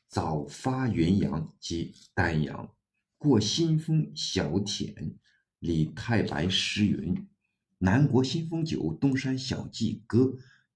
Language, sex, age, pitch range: Chinese, male, 50-69, 90-125 Hz